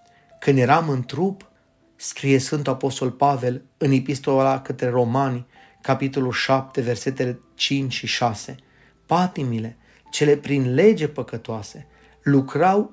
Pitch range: 125-155 Hz